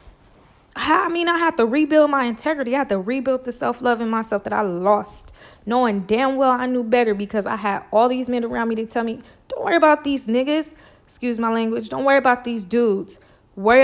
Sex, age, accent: female, 20-39, American